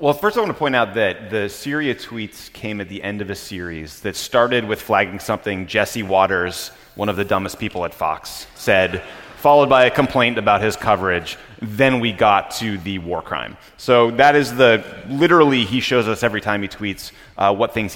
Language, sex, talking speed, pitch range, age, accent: English, male, 205 wpm, 90-120 Hz, 30-49, American